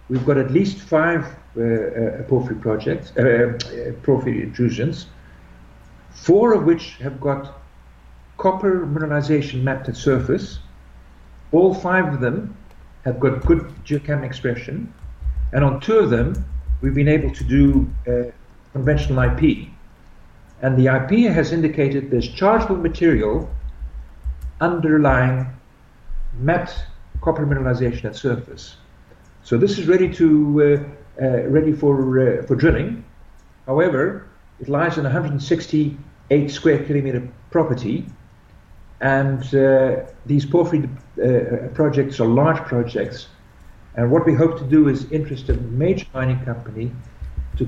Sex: male